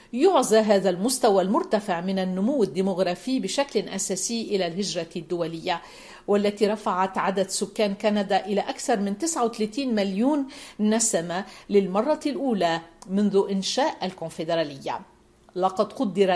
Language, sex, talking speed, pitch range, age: Arabic, female, 110 wpm, 190-235 Hz, 50-69